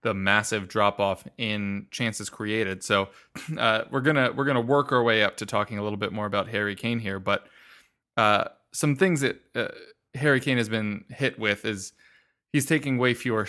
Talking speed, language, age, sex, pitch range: 195 wpm, English, 20-39, male, 110-130 Hz